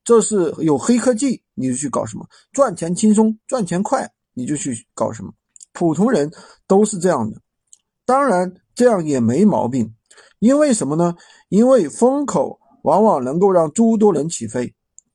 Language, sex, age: Chinese, male, 50-69